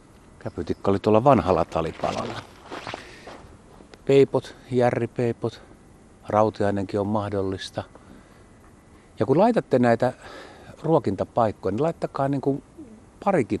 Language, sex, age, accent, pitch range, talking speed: Finnish, male, 50-69, native, 90-115 Hz, 85 wpm